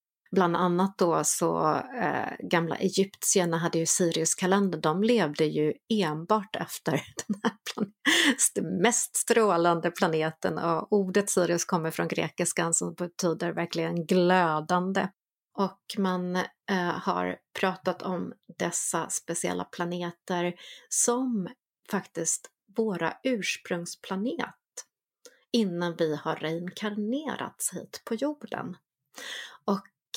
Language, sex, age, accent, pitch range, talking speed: Swedish, female, 30-49, native, 175-210 Hz, 105 wpm